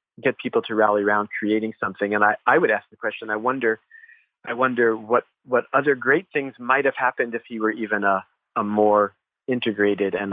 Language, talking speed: English, 205 wpm